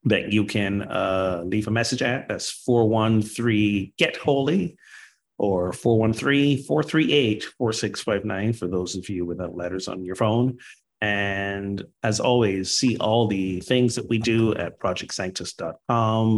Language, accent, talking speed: English, American, 135 wpm